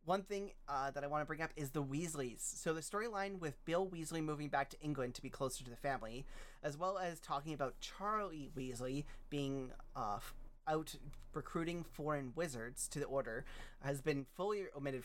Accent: American